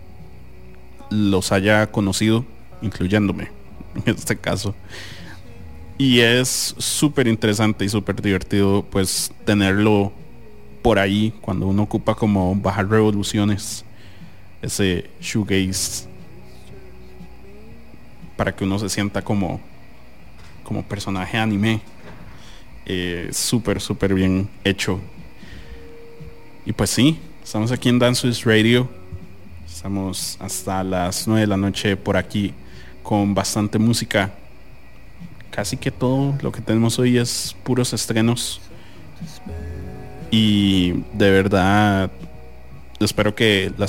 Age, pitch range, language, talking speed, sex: 30-49, 95-110 Hz, English, 105 wpm, male